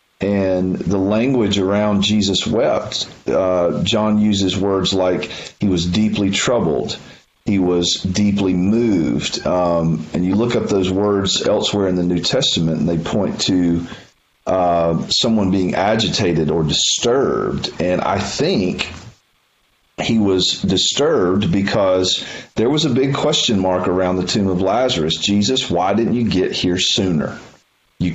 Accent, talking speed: American, 145 wpm